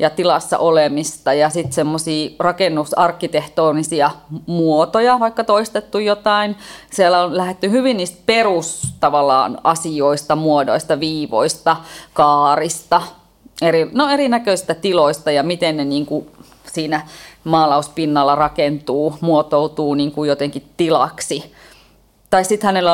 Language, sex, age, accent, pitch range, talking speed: Finnish, female, 30-49, native, 150-190 Hz, 100 wpm